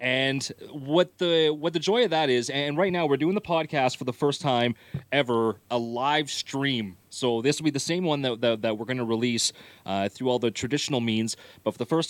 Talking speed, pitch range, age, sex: 240 wpm, 115-145 Hz, 30-49, male